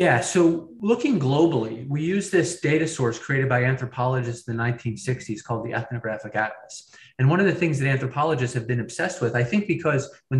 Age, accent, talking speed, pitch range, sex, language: 30-49, American, 195 wpm, 115-135 Hz, male, English